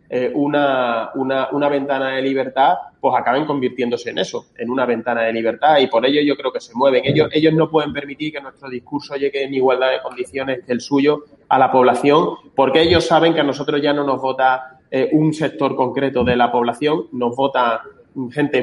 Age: 30-49